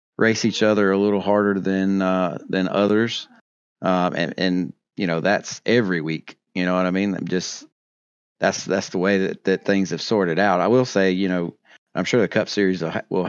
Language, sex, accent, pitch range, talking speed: English, male, American, 90-105 Hz, 210 wpm